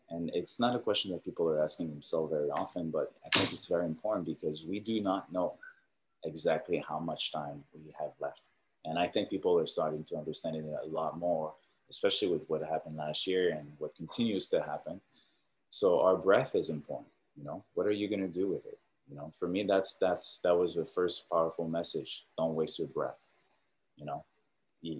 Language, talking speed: English, 210 wpm